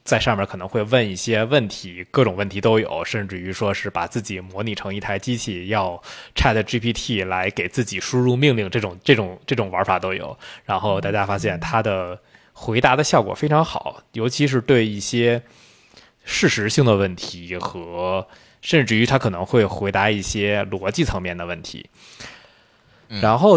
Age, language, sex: 20-39, Chinese, male